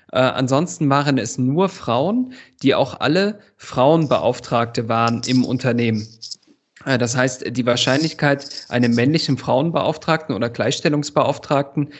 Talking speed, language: 115 wpm, German